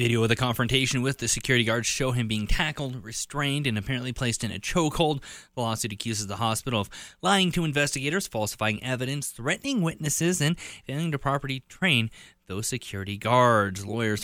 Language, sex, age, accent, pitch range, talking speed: English, male, 20-39, American, 110-145 Hz, 165 wpm